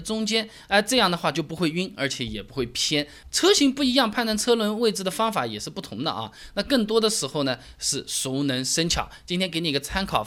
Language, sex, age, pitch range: Chinese, male, 20-39, 135-225 Hz